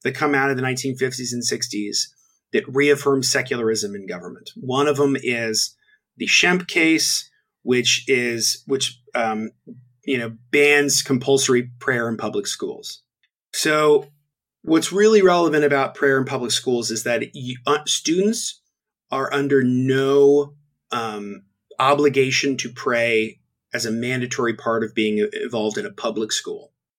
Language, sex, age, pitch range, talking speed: English, male, 30-49, 120-150 Hz, 140 wpm